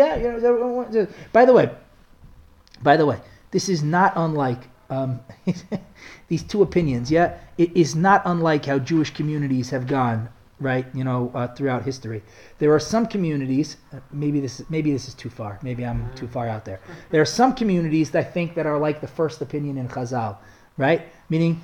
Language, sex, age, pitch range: English, male, 30-49, 150-195 Hz